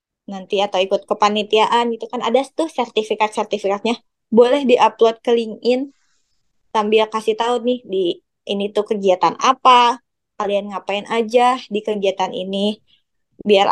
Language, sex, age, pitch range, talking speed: Indonesian, female, 20-39, 205-245 Hz, 130 wpm